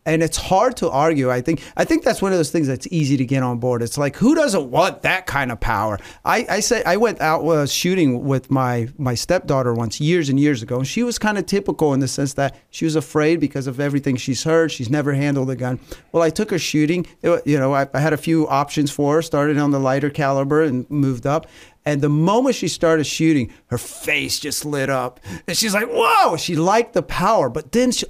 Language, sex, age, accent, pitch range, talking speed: English, male, 40-59, American, 135-175 Hz, 245 wpm